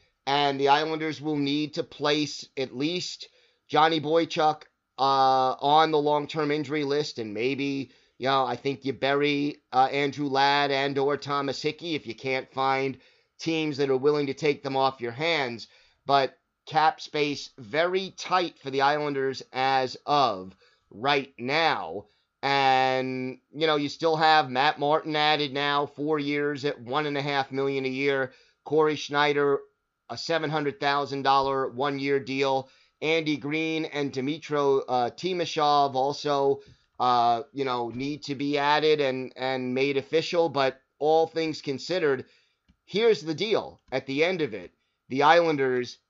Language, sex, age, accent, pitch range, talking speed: English, male, 30-49, American, 135-155 Hz, 155 wpm